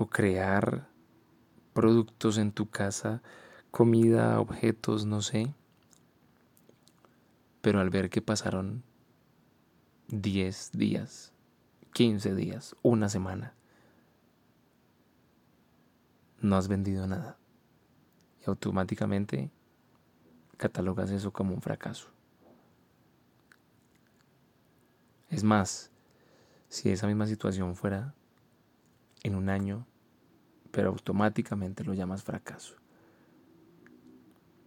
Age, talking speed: 20-39, 80 wpm